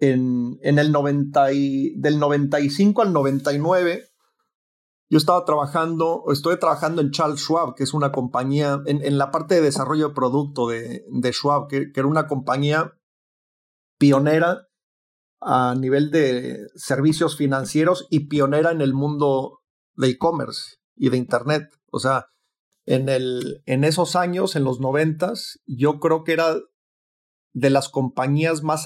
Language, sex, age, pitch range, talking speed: Spanish, male, 40-59, 130-150 Hz, 150 wpm